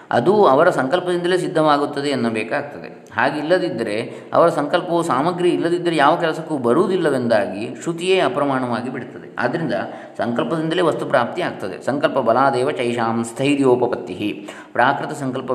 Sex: male